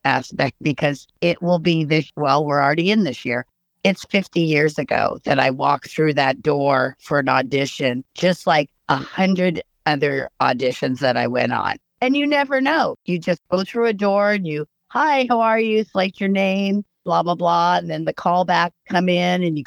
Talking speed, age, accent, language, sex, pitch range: 200 wpm, 50-69, American, English, female, 150-185 Hz